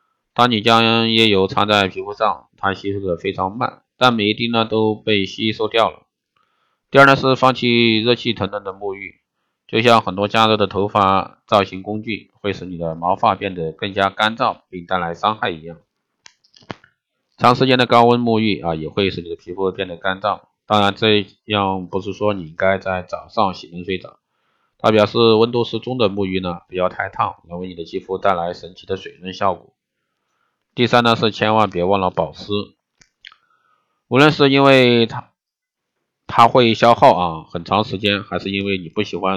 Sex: male